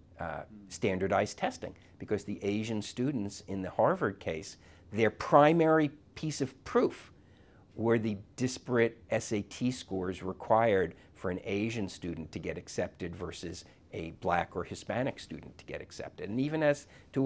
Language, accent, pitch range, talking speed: English, American, 90-115 Hz, 145 wpm